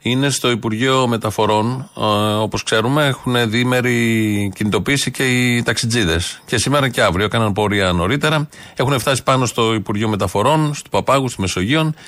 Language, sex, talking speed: Greek, male, 150 wpm